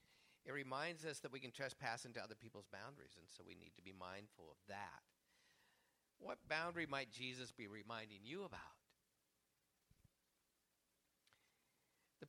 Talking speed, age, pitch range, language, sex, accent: 140 wpm, 50-69, 115-175 Hz, English, male, American